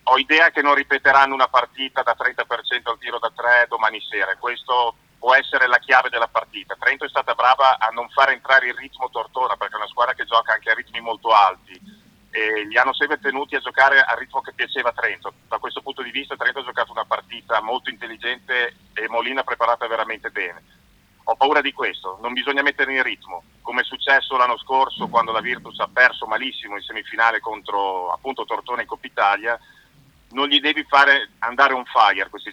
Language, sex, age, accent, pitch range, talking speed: Italian, male, 40-59, native, 115-140 Hz, 205 wpm